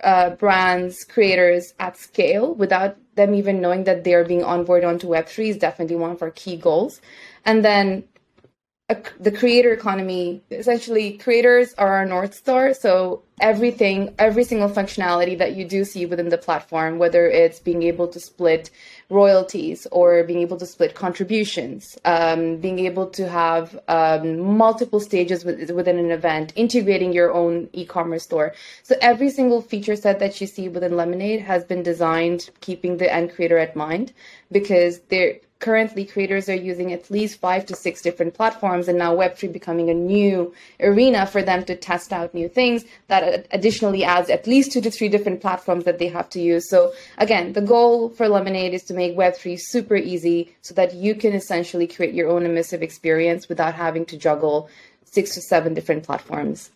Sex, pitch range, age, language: female, 170-205 Hz, 20-39, English